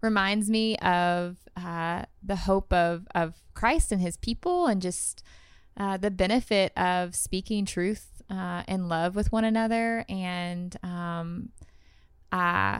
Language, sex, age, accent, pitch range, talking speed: English, female, 20-39, American, 170-195 Hz, 135 wpm